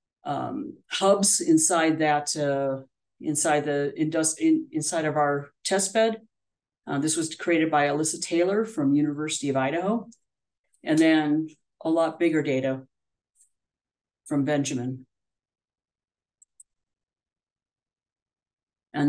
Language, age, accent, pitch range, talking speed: English, 50-69, American, 145-190 Hz, 105 wpm